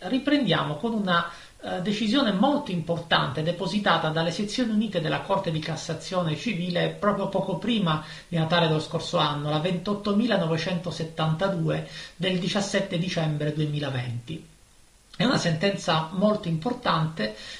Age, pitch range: 40-59, 160-210 Hz